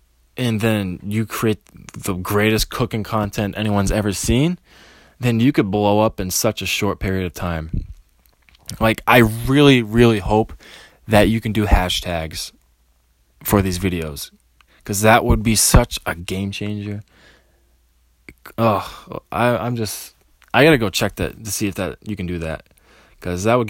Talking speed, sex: 160 wpm, male